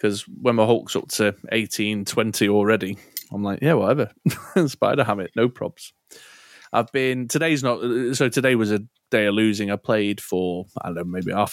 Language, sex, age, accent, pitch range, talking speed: English, male, 20-39, British, 100-115 Hz, 185 wpm